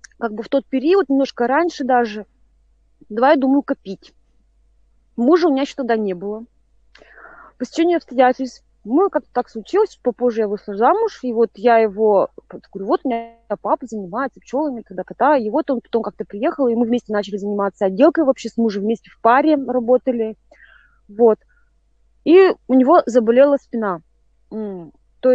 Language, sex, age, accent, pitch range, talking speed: Russian, female, 20-39, native, 215-280 Hz, 165 wpm